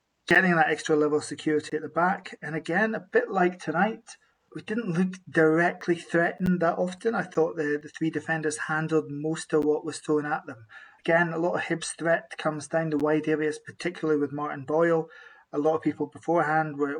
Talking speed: 200 wpm